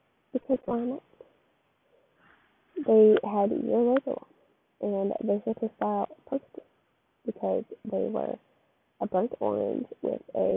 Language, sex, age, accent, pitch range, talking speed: English, female, 10-29, American, 200-280 Hz, 120 wpm